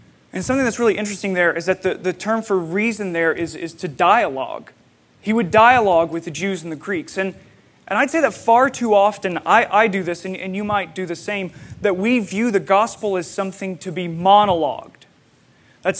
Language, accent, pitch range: English, American, 165-210 Hz